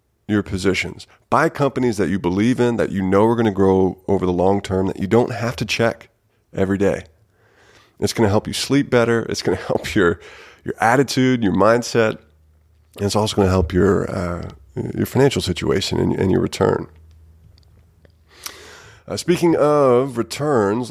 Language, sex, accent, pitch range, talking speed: English, male, American, 95-120 Hz, 180 wpm